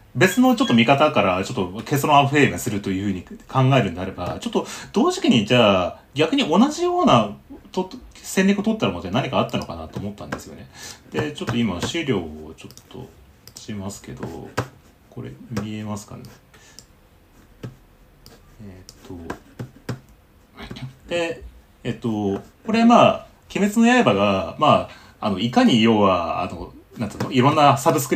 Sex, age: male, 30-49